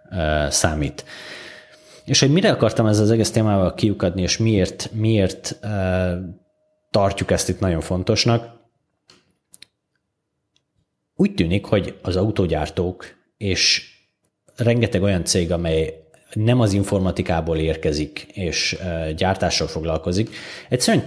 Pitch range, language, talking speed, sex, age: 90-110 Hz, Hungarian, 105 wpm, male, 30-49